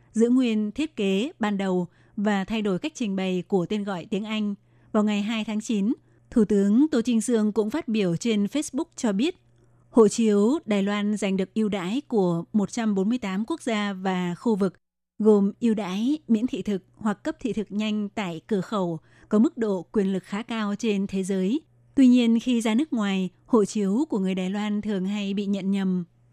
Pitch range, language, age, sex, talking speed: 190-230 Hz, Vietnamese, 20-39, female, 205 wpm